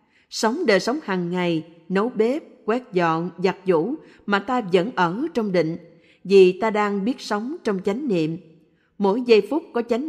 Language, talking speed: Vietnamese, 180 wpm